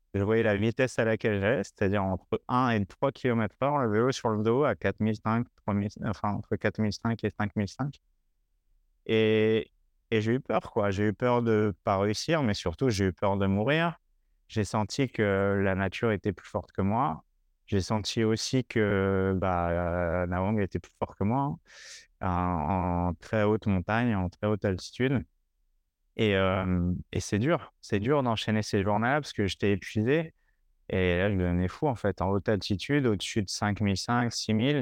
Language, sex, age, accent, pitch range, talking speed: French, male, 30-49, French, 90-110 Hz, 185 wpm